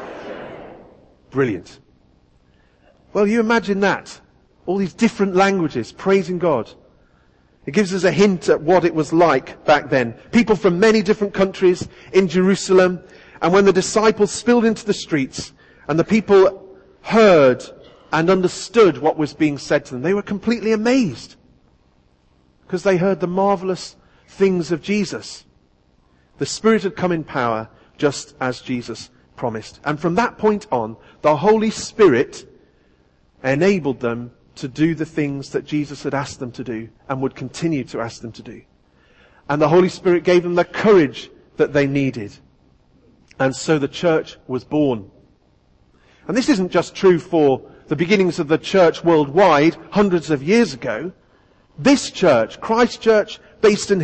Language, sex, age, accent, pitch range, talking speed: English, male, 40-59, British, 135-200 Hz, 155 wpm